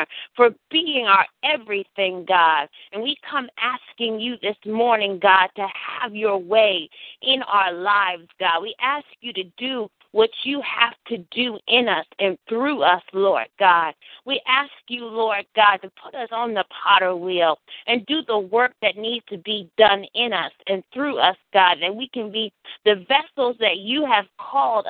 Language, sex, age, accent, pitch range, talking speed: English, female, 40-59, American, 195-250 Hz, 180 wpm